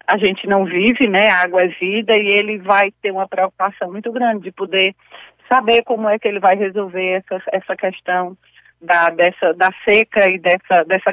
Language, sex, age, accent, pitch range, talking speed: Portuguese, female, 40-59, Brazilian, 190-230 Hz, 195 wpm